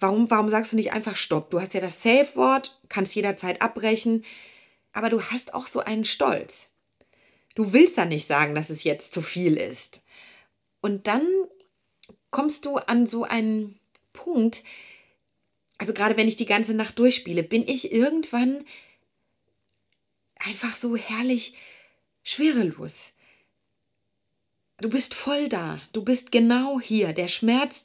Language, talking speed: German, 140 wpm